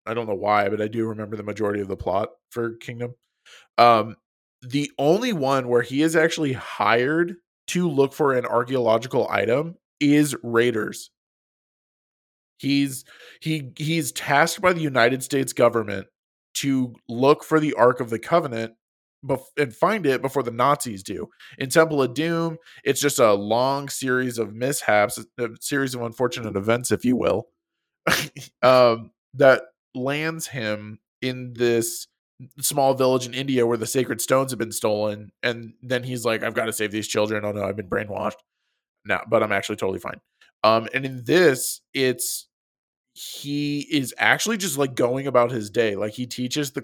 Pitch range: 115-140 Hz